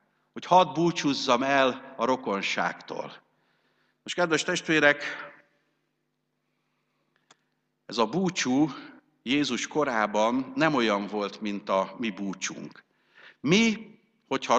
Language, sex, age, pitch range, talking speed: Hungarian, male, 60-79, 110-155 Hz, 95 wpm